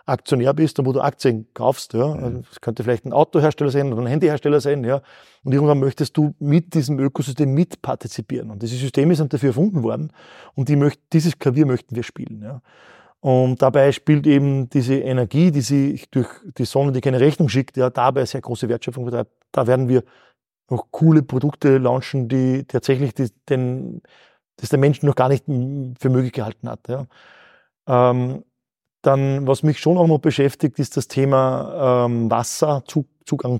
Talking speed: 180 wpm